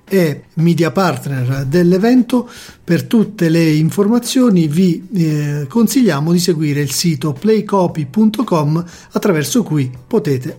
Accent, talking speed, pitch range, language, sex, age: native, 110 wpm, 135-175 Hz, Italian, male, 40-59